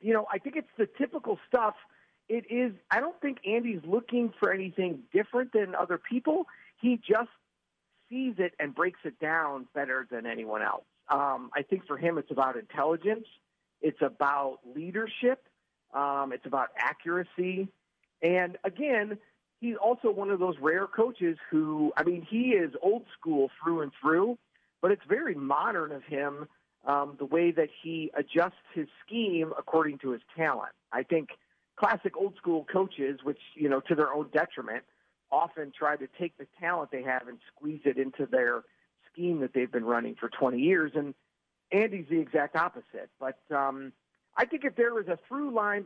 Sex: male